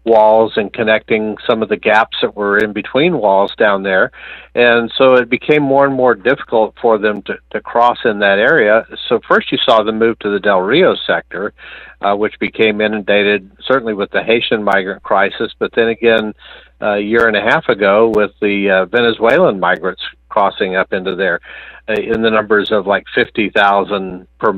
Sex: male